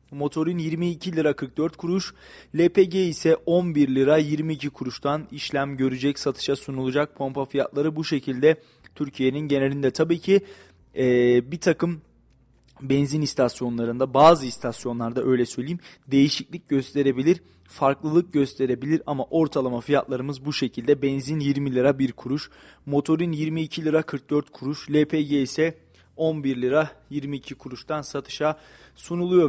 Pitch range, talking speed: 135-155 Hz, 120 wpm